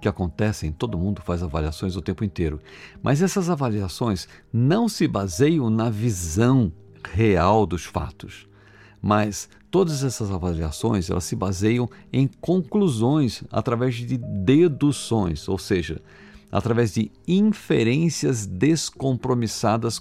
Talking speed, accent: 110 wpm, Brazilian